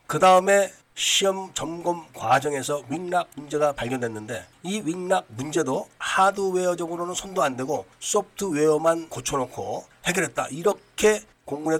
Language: Korean